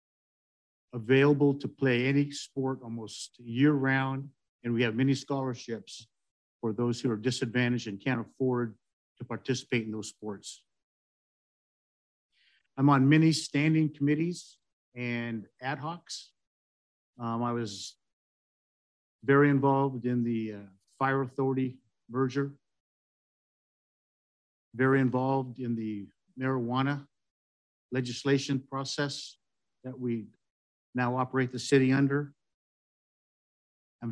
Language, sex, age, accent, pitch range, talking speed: English, male, 50-69, American, 115-140 Hz, 105 wpm